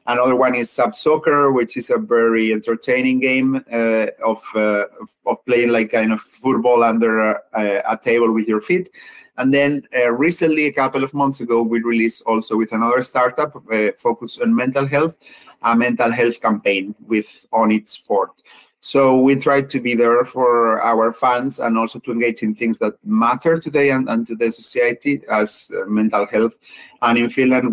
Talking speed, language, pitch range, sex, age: 185 wpm, Finnish, 110-130 Hz, male, 30-49